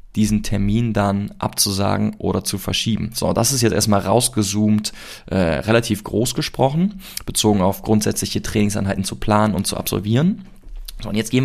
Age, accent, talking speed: 20-39, German, 155 wpm